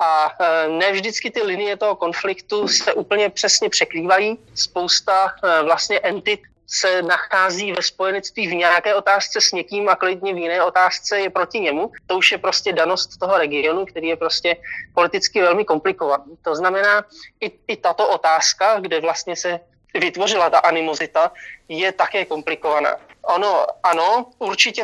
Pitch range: 170-205 Hz